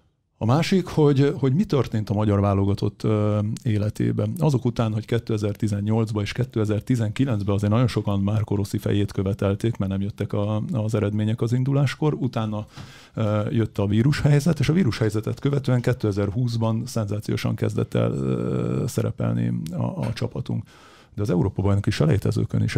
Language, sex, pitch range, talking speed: Hungarian, male, 105-125 Hz, 140 wpm